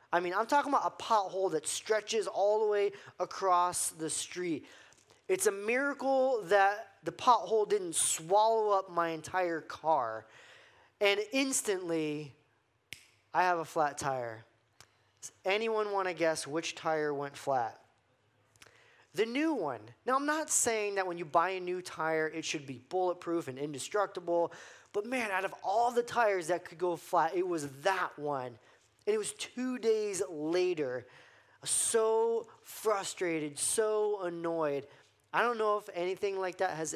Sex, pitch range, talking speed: male, 150-205 Hz, 155 wpm